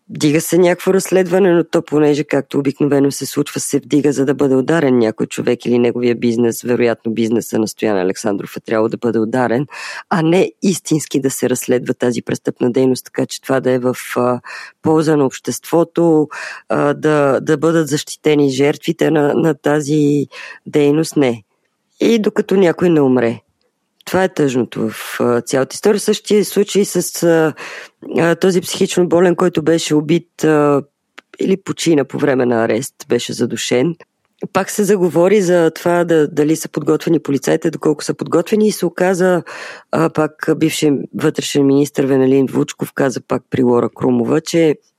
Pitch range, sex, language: 130-170 Hz, female, Bulgarian